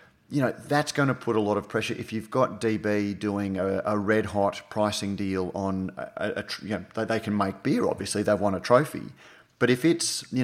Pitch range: 100-115 Hz